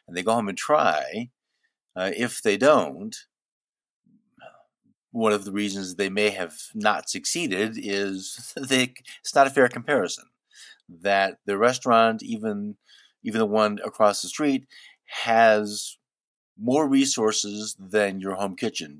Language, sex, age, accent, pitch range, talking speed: English, male, 50-69, American, 100-130 Hz, 135 wpm